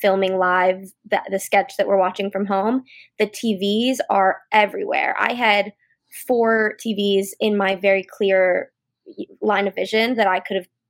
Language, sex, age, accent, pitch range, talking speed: English, female, 20-39, American, 200-230 Hz, 160 wpm